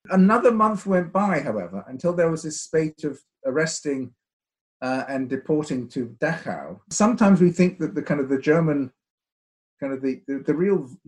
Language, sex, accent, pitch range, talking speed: English, male, British, 130-180 Hz, 175 wpm